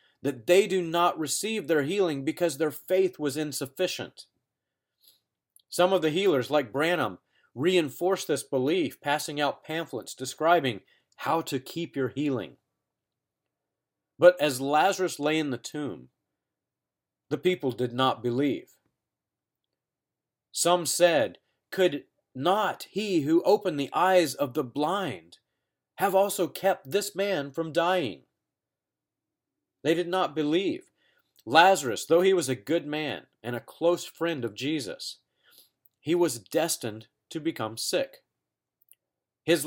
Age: 40-59